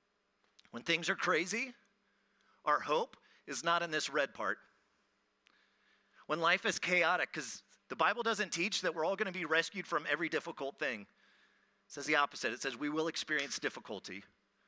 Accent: American